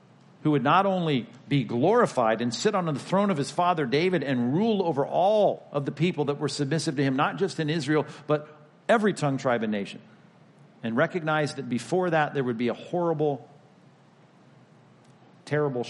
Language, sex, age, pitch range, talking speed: English, male, 50-69, 130-160 Hz, 180 wpm